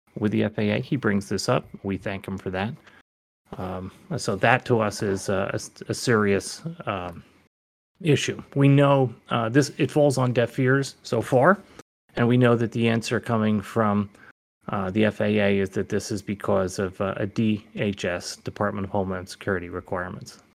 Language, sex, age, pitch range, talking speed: English, male, 30-49, 100-125 Hz, 175 wpm